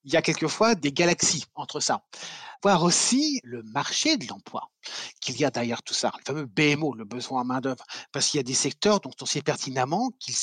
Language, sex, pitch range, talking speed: French, male, 135-190 Hz, 225 wpm